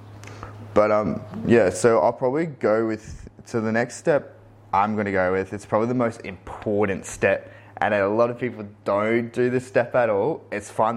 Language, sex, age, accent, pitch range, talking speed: English, male, 20-39, Australian, 100-110 Hz, 195 wpm